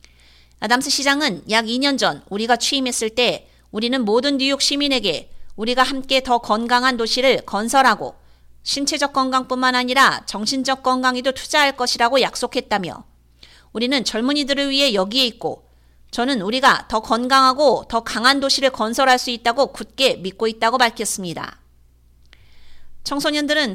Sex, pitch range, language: female, 215-270 Hz, Korean